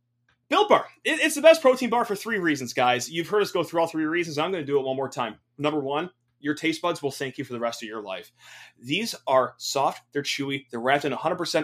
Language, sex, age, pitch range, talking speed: English, male, 30-49, 125-175 Hz, 255 wpm